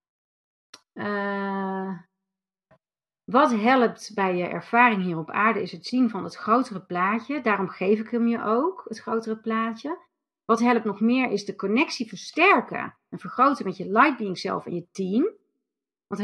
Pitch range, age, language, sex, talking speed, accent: 190-255 Hz, 40-59, Dutch, female, 165 wpm, Dutch